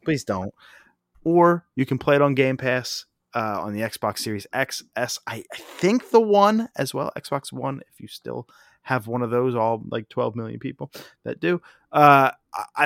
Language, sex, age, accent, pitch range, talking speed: English, male, 30-49, American, 110-150 Hz, 190 wpm